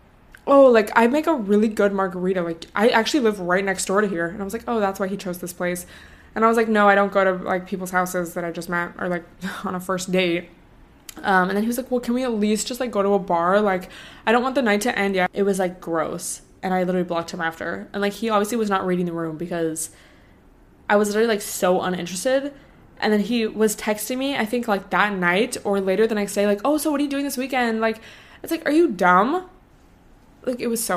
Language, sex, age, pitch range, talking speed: English, female, 20-39, 180-225 Hz, 265 wpm